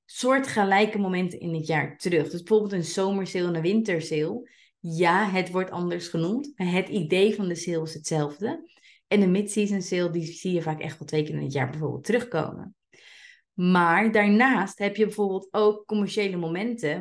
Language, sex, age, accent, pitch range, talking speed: Dutch, female, 30-49, Dutch, 160-210 Hz, 180 wpm